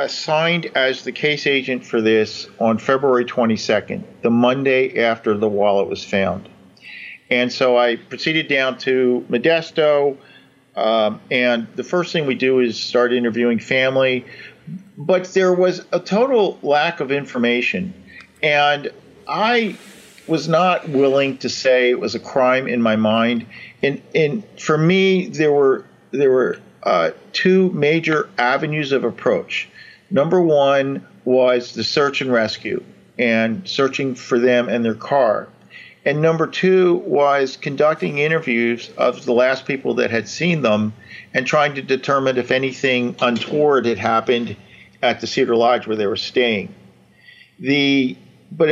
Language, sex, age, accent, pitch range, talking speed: English, male, 50-69, American, 120-155 Hz, 145 wpm